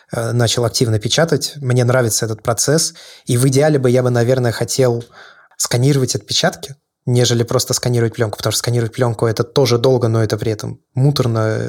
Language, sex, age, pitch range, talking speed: Russian, male, 20-39, 110-130 Hz, 170 wpm